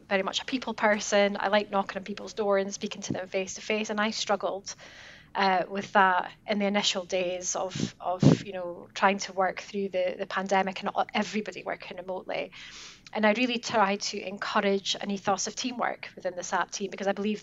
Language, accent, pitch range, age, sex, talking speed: English, British, 190-215 Hz, 20-39, female, 205 wpm